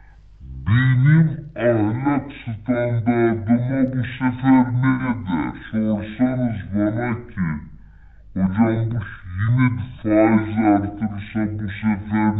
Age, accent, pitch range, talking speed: 60-79, American, 100-130 Hz, 80 wpm